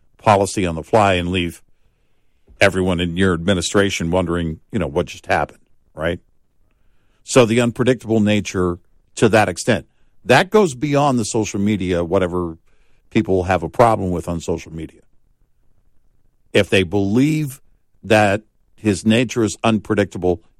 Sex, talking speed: male, 135 wpm